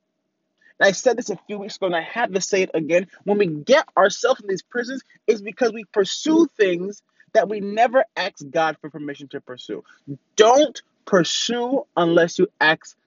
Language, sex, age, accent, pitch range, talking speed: English, male, 30-49, American, 200-300 Hz, 185 wpm